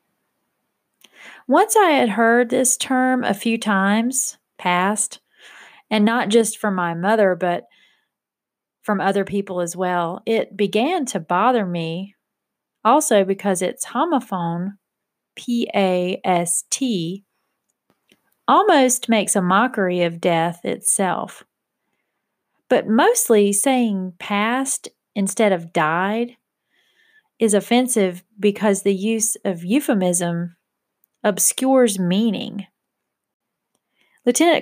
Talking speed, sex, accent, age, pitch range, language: 95 wpm, female, American, 30-49, 185-225 Hz, English